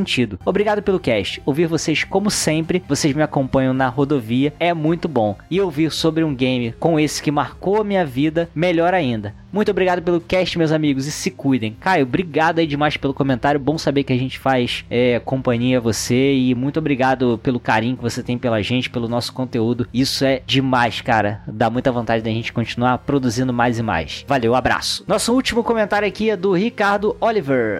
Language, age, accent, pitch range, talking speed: Portuguese, 20-39, Brazilian, 125-175 Hz, 195 wpm